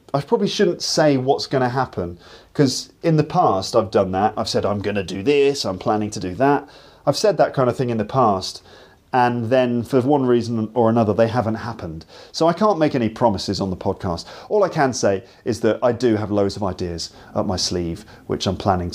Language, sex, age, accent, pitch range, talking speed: English, male, 40-59, British, 100-145 Hz, 230 wpm